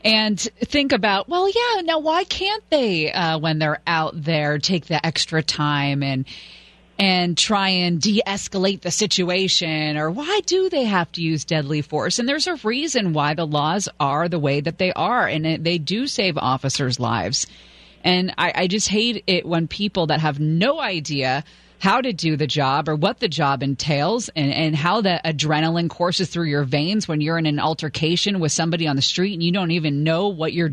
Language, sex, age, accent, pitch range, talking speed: English, female, 30-49, American, 150-185 Hz, 200 wpm